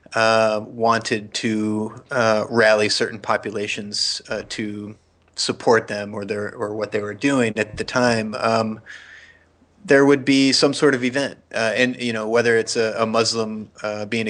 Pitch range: 110-125 Hz